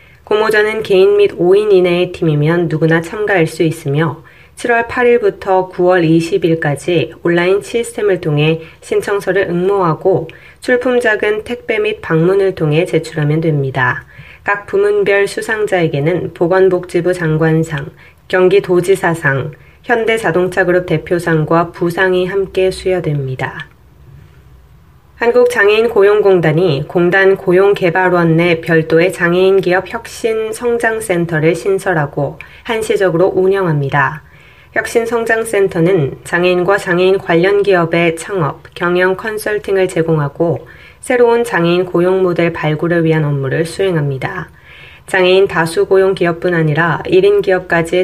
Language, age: Korean, 20-39